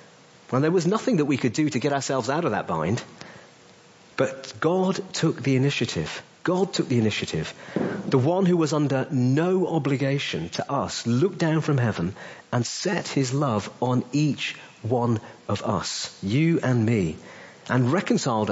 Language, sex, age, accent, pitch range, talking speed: English, male, 40-59, British, 120-150 Hz, 165 wpm